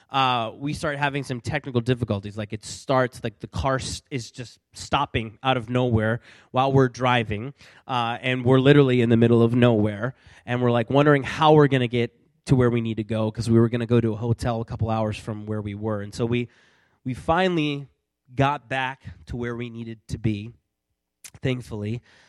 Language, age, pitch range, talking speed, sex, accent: English, 20-39, 115-150 Hz, 205 wpm, male, American